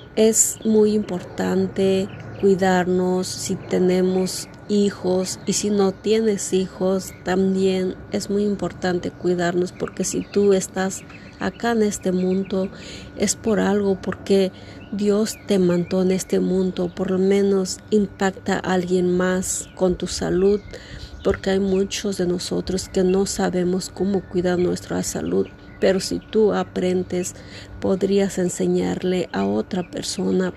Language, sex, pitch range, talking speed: Spanish, female, 180-195 Hz, 130 wpm